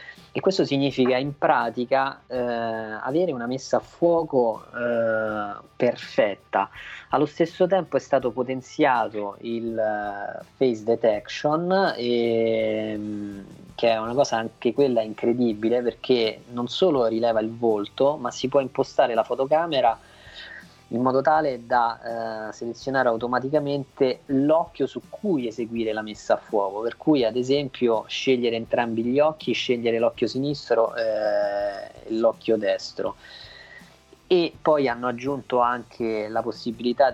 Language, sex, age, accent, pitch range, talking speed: Italian, male, 20-39, native, 115-140 Hz, 130 wpm